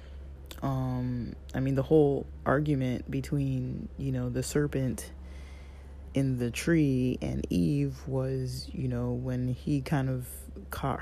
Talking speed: 130 wpm